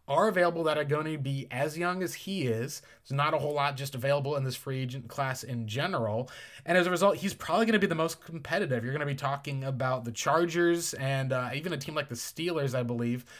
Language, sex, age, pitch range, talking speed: English, male, 20-39, 130-155 Hz, 250 wpm